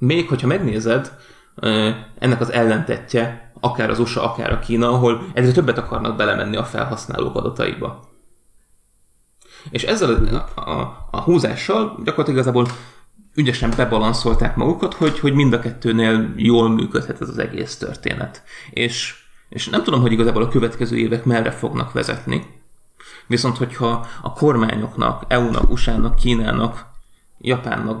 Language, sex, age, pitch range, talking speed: Hungarian, male, 30-49, 115-125 Hz, 135 wpm